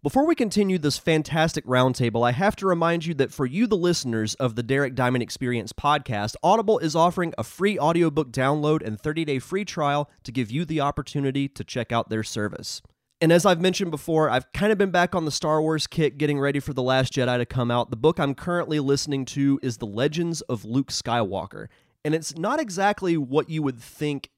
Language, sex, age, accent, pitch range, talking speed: English, male, 30-49, American, 120-155 Hz, 215 wpm